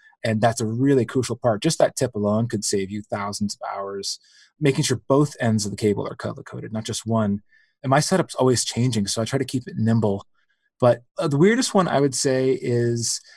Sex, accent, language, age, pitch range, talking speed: male, American, English, 30-49, 115-140 Hz, 220 wpm